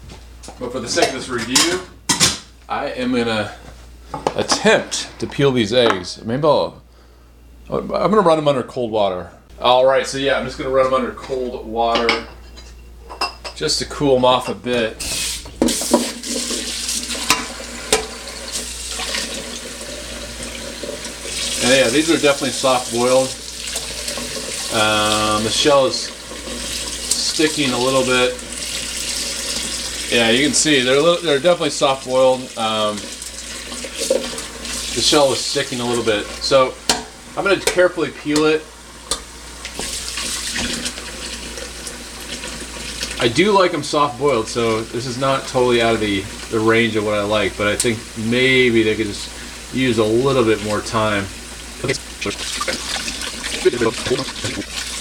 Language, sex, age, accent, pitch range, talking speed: English, male, 30-49, American, 105-135 Hz, 125 wpm